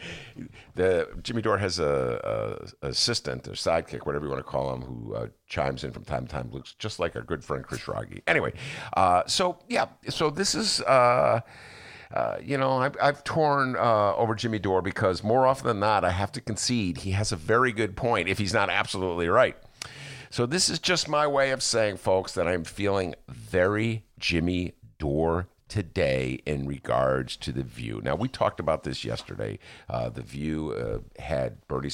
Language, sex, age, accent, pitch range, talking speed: English, male, 50-69, American, 80-130 Hz, 190 wpm